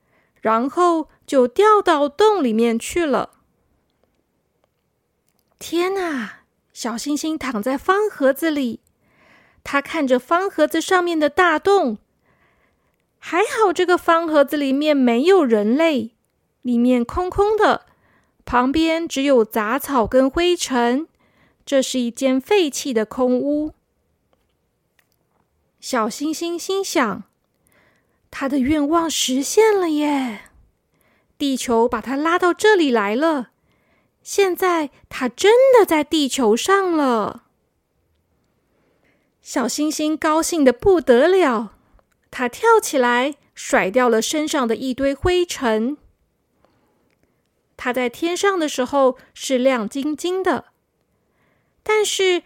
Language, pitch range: Chinese, 255-340 Hz